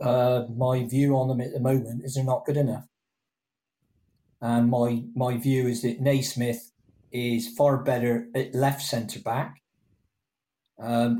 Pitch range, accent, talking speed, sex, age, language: 120-135 Hz, British, 145 wpm, male, 40-59, English